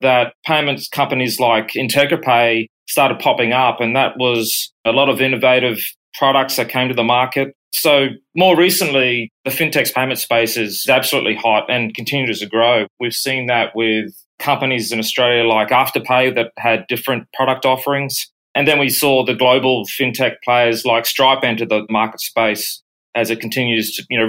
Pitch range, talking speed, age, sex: 115-140 Hz, 170 wpm, 30-49, male